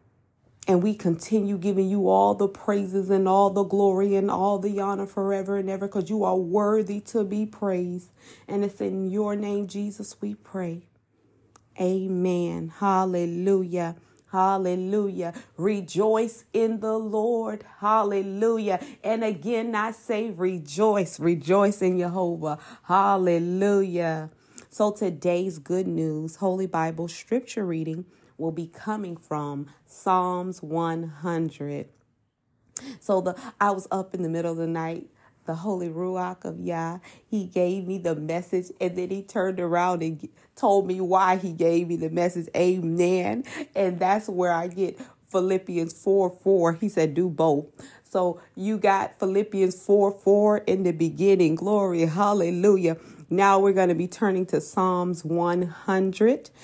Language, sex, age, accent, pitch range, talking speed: English, female, 40-59, American, 165-200 Hz, 140 wpm